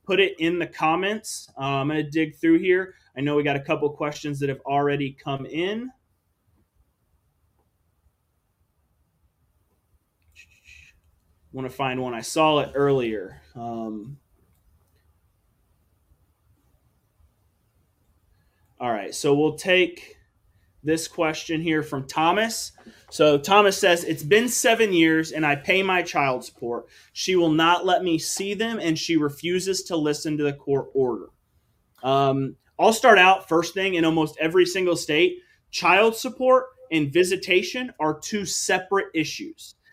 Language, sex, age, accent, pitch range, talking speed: English, male, 30-49, American, 125-180 Hz, 135 wpm